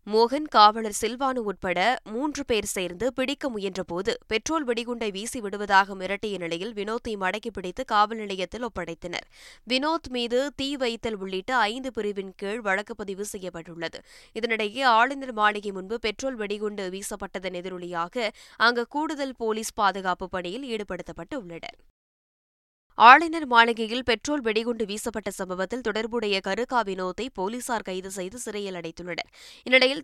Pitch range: 195-245 Hz